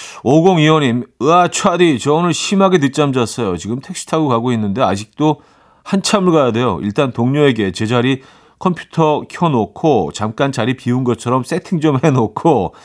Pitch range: 105-150 Hz